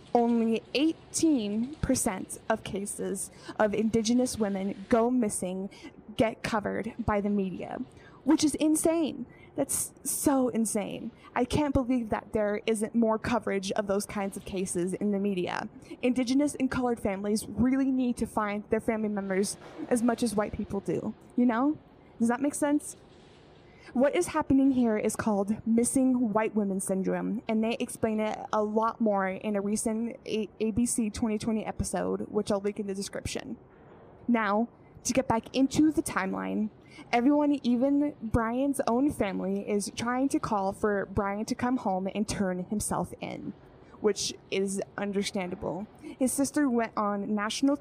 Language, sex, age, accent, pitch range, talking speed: English, female, 10-29, American, 205-250 Hz, 150 wpm